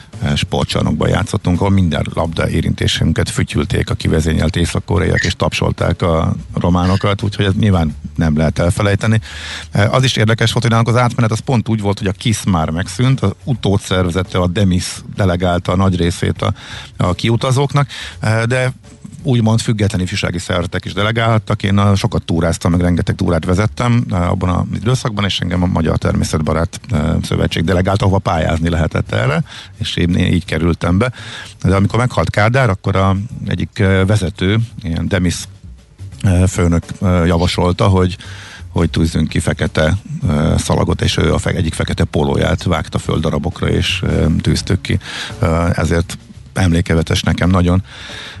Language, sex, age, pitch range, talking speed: Hungarian, male, 50-69, 85-110 Hz, 145 wpm